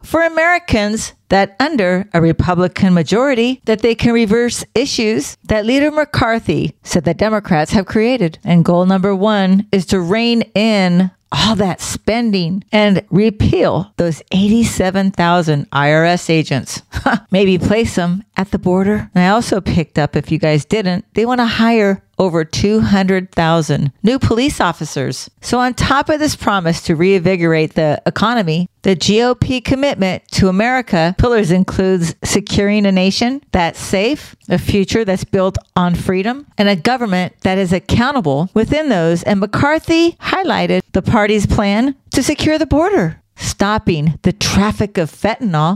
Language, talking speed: English, 150 wpm